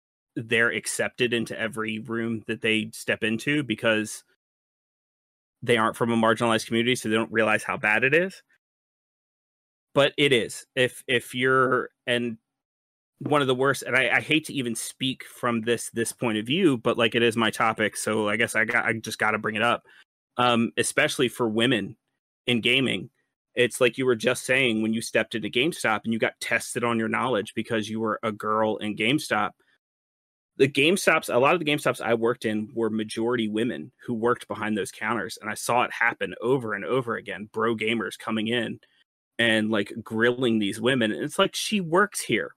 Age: 30-49